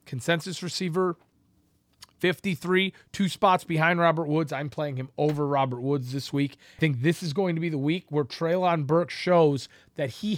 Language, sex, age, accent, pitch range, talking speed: English, male, 30-49, American, 140-185 Hz, 180 wpm